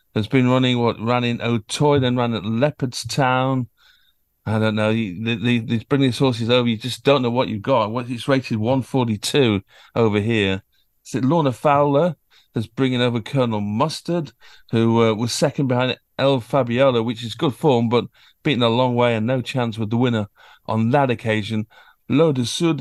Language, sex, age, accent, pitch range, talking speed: English, male, 50-69, British, 115-135 Hz, 180 wpm